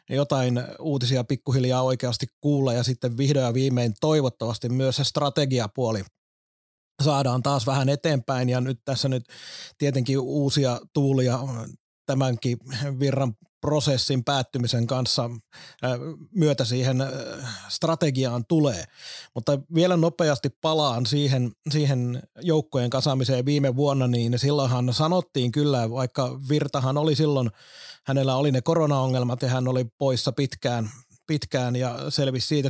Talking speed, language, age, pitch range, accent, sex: 120 wpm, Finnish, 30-49, 125-145 Hz, native, male